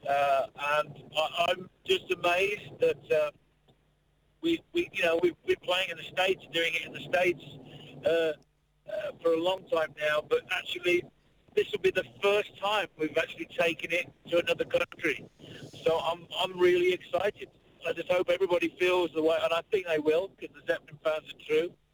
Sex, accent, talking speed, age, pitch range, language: male, British, 185 wpm, 50-69, 160-215 Hz, English